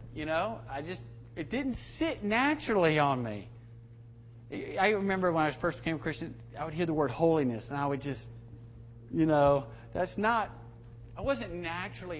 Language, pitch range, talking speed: English, 115-160 Hz, 170 wpm